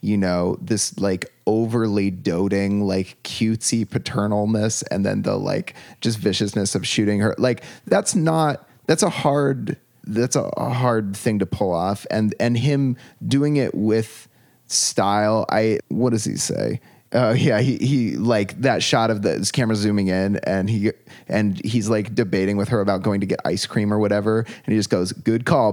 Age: 30-49